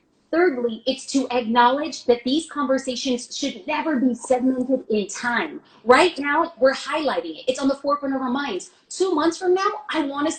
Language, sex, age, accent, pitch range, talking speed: English, female, 30-49, American, 235-290 Hz, 185 wpm